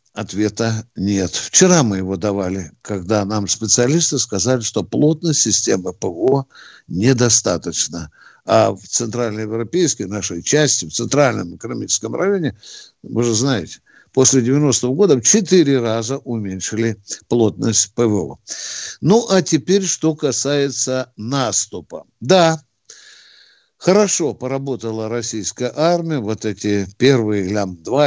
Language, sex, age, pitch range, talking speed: Russian, male, 60-79, 110-145 Hz, 110 wpm